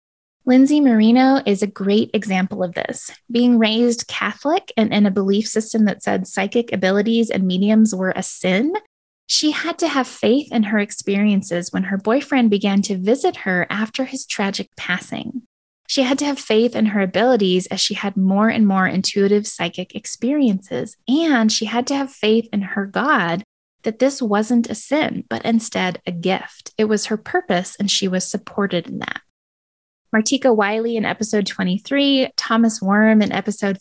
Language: English